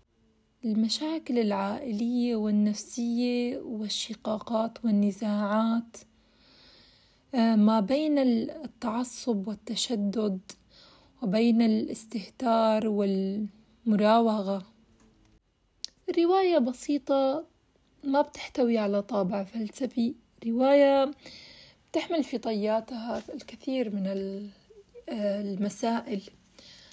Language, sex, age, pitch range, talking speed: Arabic, female, 30-49, 215-260 Hz, 60 wpm